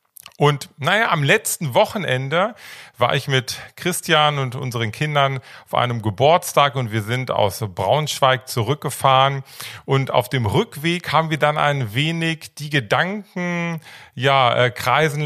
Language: German